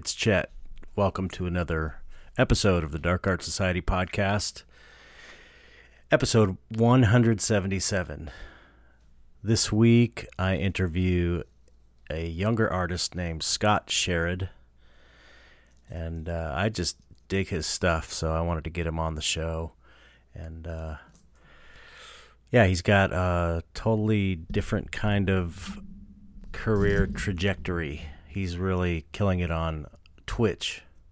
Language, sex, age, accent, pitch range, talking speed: English, male, 40-59, American, 80-100 Hz, 110 wpm